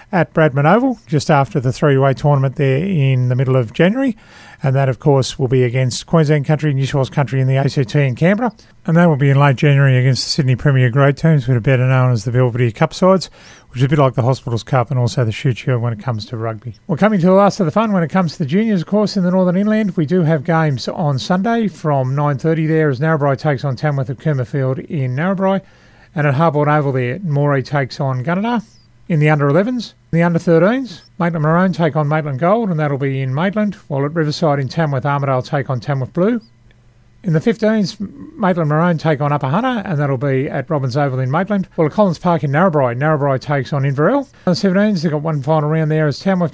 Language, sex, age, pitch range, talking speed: English, male, 30-49, 135-170 Hz, 240 wpm